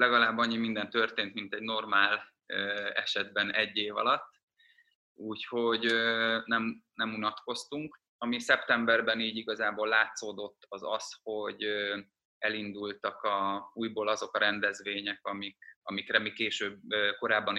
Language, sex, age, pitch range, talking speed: Hungarian, male, 20-39, 105-115 Hz, 105 wpm